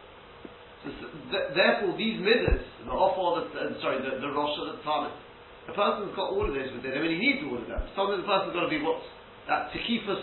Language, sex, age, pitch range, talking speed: English, male, 50-69, 160-250 Hz, 215 wpm